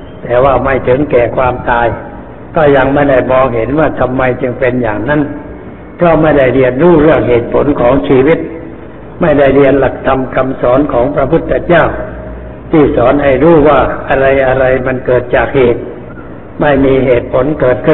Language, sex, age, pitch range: Thai, male, 60-79, 125-150 Hz